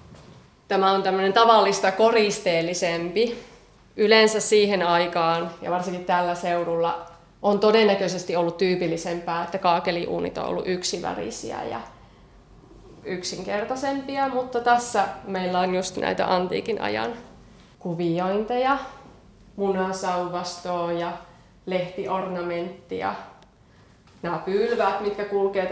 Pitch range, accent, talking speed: 175-210 Hz, native, 90 wpm